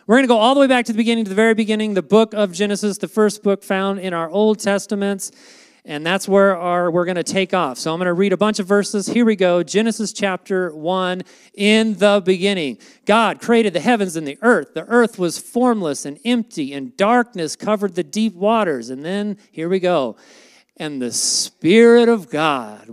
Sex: male